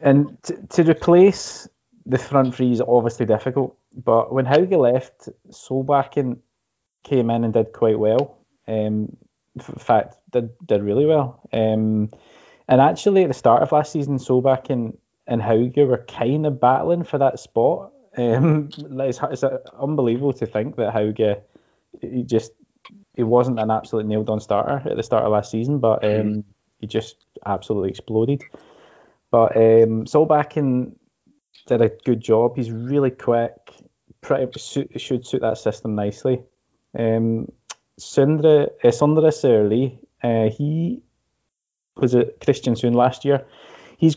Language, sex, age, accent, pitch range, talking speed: English, male, 20-39, British, 110-140 Hz, 145 wpm